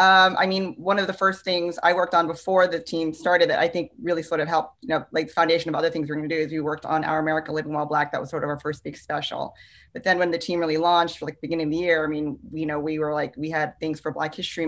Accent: American